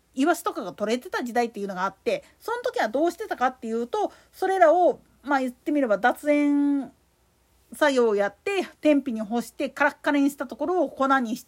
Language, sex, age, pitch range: Japanese, female, 40-59, 230-335 Hz